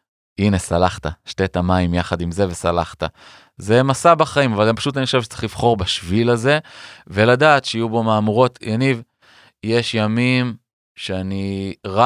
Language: Hebrew